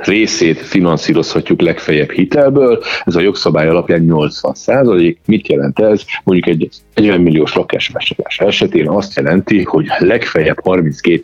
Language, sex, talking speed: Hungarian, male, 125 wpm